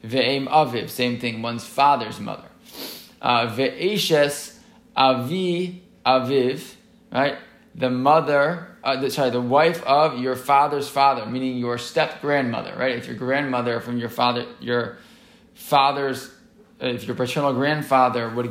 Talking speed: 125 wpm